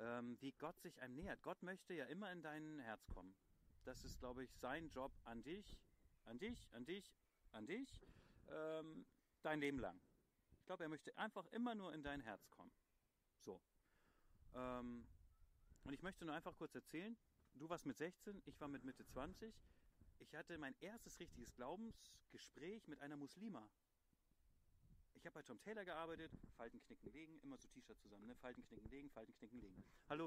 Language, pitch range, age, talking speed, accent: German, 125-175 Hz, 40-59, 175 wpm, German